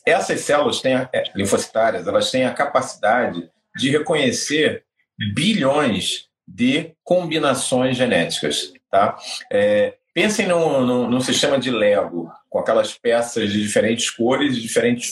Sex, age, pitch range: male, 40-59, 120-205 Hz